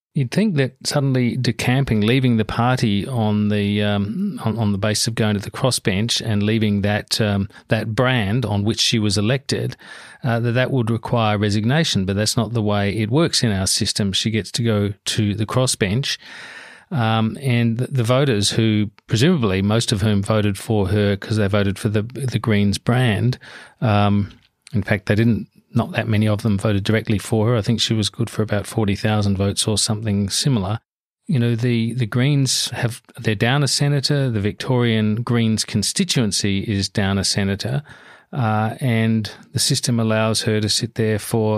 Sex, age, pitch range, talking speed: male, 40-59, 105-120 Hz, 185 wpm